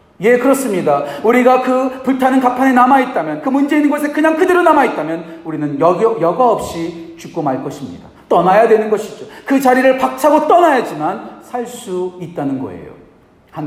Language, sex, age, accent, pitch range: Korean, male, 40-59, native, 160-245 Hz